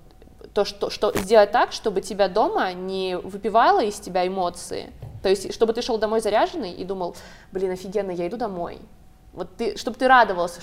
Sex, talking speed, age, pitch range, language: female, 170 wpm, 20-39, 185-225 Hz, Russian